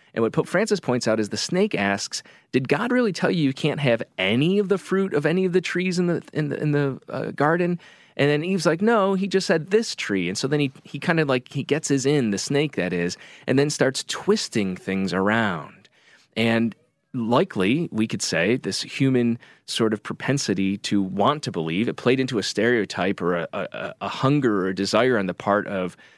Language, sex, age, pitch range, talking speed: English, male, 30-49, 95-145 Hz, 225 wpm